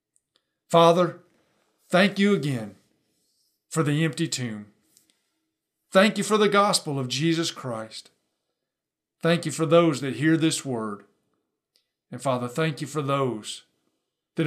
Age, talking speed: 50-69, 130 wpm